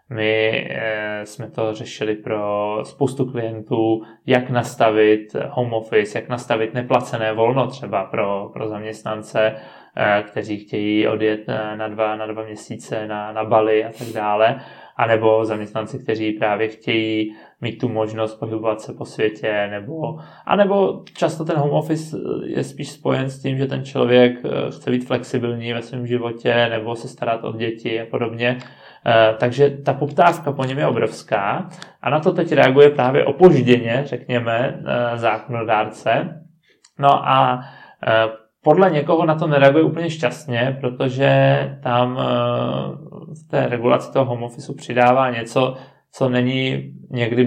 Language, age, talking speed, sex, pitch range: Czech, 20-39, 145 wpm, male, 110-135 Hz